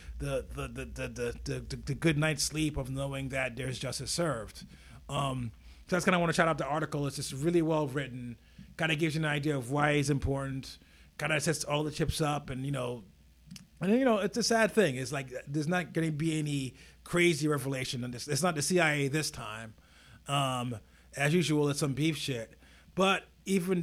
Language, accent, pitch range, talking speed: English, American, 135-160 Hz, 210 wpm